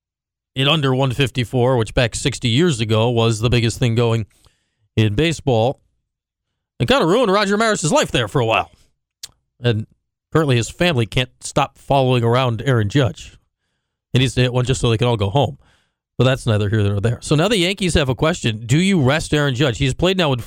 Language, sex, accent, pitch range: English, male, American, 115-140 Hz